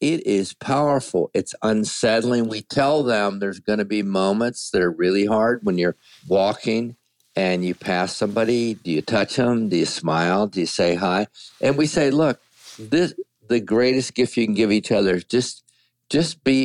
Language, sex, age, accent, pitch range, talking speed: English, male, 50-69, American, 100-135 Hz, 180 wpm